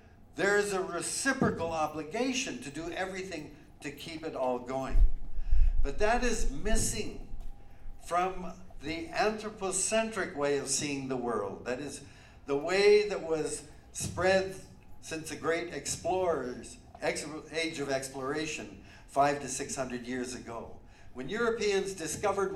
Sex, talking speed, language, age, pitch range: male, 130 wpm, English, 60-79, 130-180 Hz